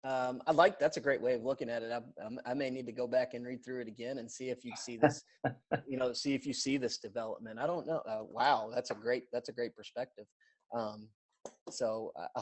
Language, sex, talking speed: English, male, 250 wpm